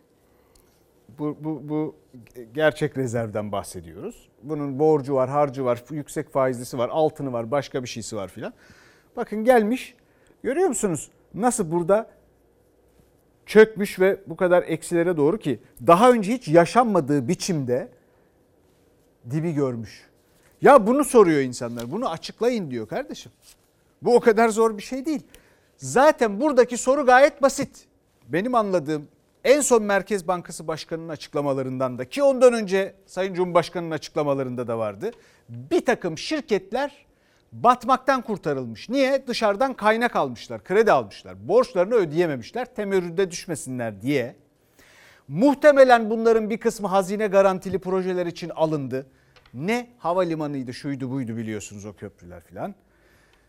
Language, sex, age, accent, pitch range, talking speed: Turkish, male, 60-79, native, 140-230 Hz, 125 wpm